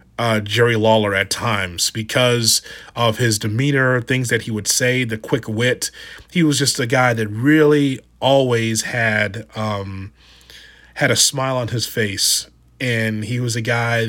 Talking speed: 160 wpm